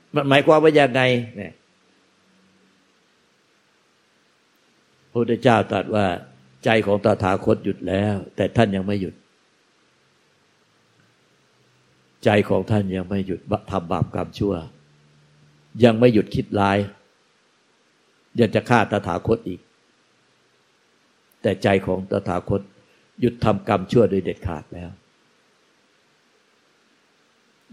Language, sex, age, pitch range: Thai, male, 60-79, 90-110 Hz